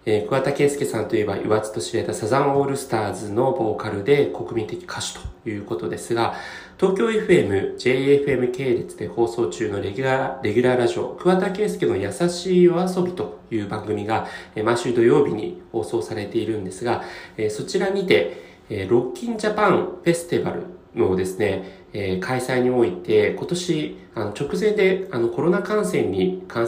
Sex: male